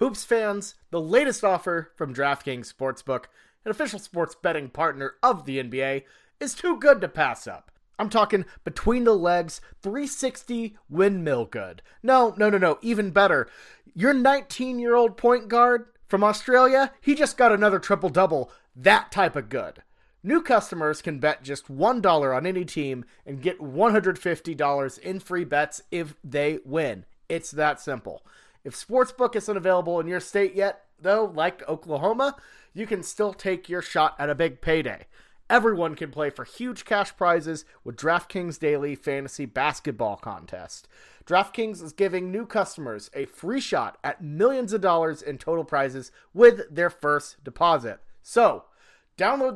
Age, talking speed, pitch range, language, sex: 30-49, 155 wpm, 150-220 Hz, English, male